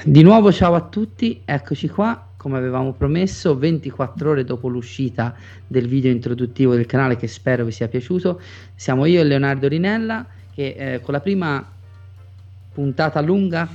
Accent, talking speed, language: native, 155 wpm, Italian